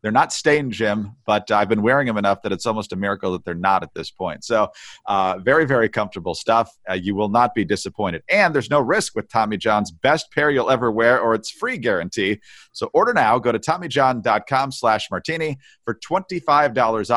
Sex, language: male, English